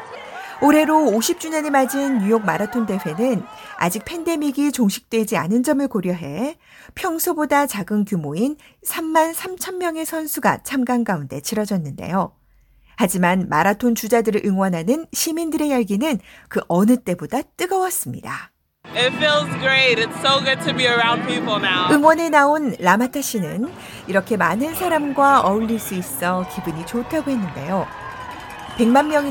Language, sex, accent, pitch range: Korean, female, native, 200-295 Hz